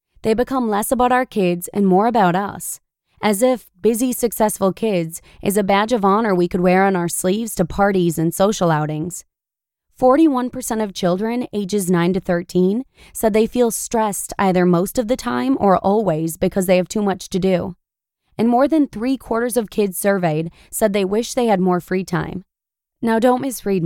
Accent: American